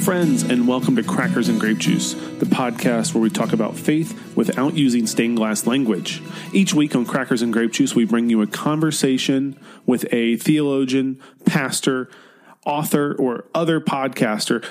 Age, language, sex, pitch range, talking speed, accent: 30-49, English, male, 120-175 Hz, 165 wpm, American